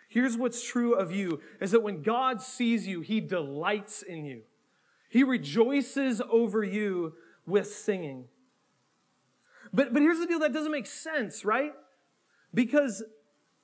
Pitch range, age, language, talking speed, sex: 185-255 Hz, 30-49, English, 140 wpm, male